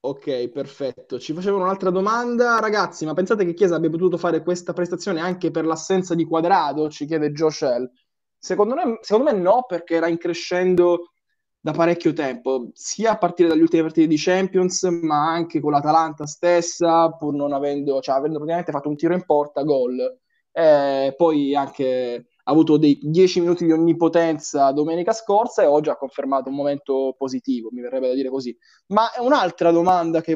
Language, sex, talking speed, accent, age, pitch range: Italian, male, 175 wpm, native, 20-39, 150-195 Hz